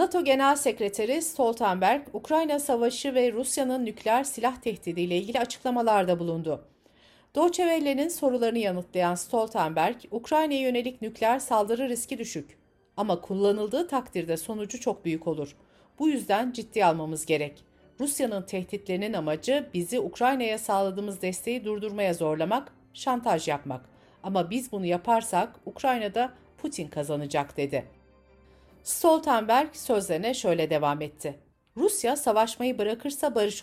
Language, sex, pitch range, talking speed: Turkish, female, 175-255 Hz, 115 wpm